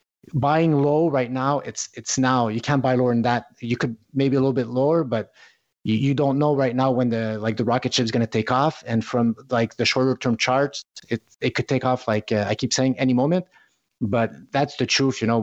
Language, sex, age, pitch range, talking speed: English, male, 30-49, 115-130 Hz, 245 wpm